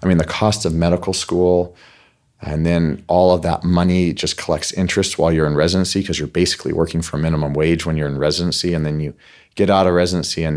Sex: male